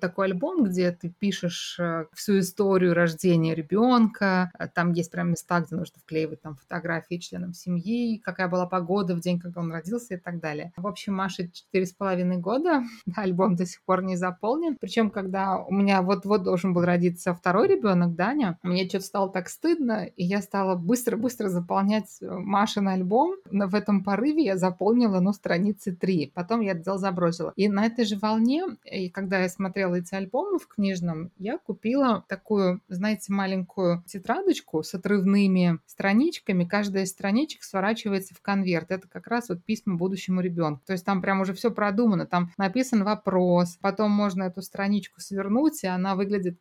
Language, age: Russian, 20-39